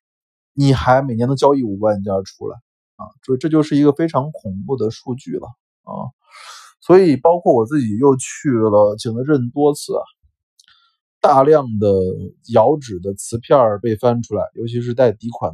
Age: 20-39